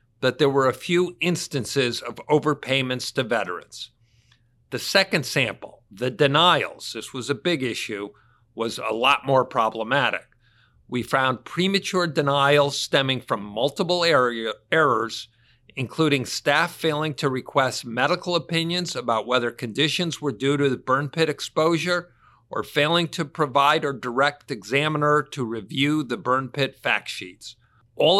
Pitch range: 120-155 Hz